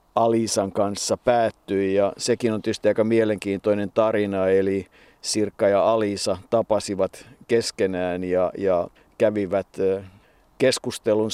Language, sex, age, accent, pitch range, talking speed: Finnish, male, 50-69, native, 100-115 Hz, 105 wpm